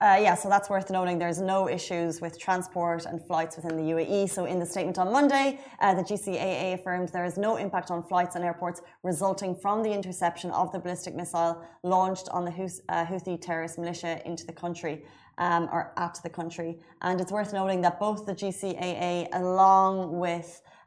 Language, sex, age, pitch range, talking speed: Arabic, female, 20-39, 170-190 Hz, 195 wpm